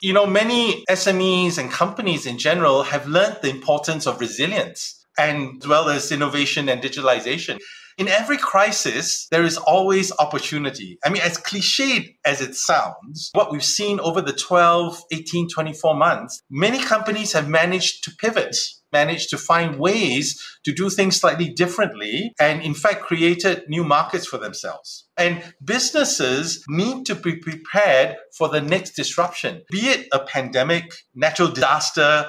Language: English